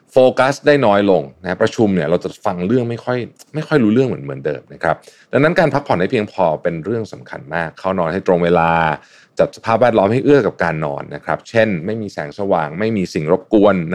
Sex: male